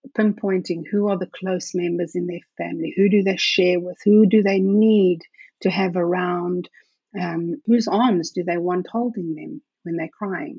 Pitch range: 170-205 Hz